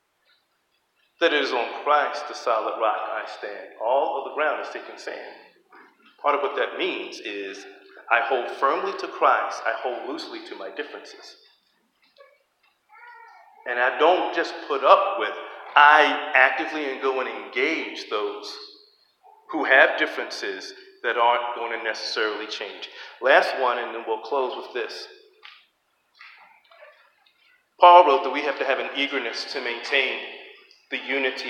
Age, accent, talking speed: 40-59, American, 145 wpm